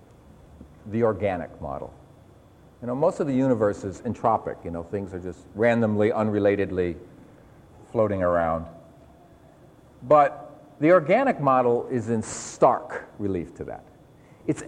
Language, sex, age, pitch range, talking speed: English, male, 50-69, 115-175 Hz, 125 wpm